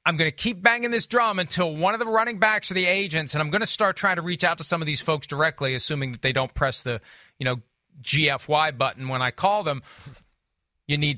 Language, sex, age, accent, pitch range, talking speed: English, male, 40-59, American, 145-195 Hz, 250 wpm